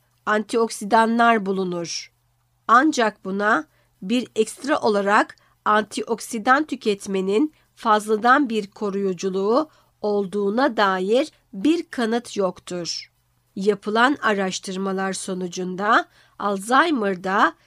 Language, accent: Turkish, native